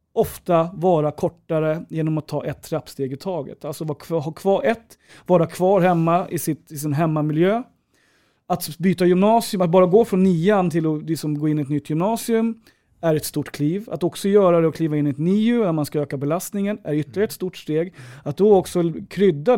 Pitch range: 155-195 Hz